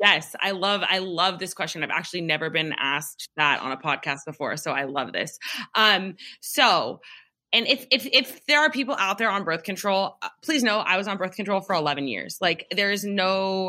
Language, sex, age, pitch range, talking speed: English, female, 20-39, 165-210 Hz, 210 wpm